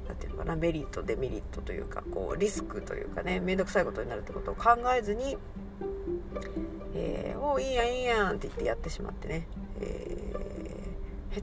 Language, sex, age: Japanese, female, 40-59